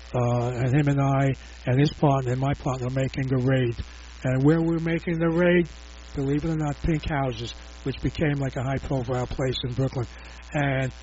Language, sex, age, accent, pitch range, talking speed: English, male, 60-79, American, 130-185 Hz, 205 wpm